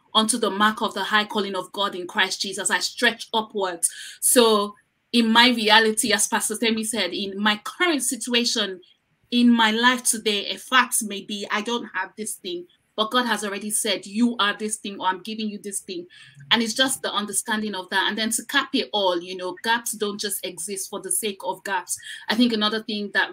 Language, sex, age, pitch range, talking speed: English, female, 20-39, 185-220 Hz, 215 wpm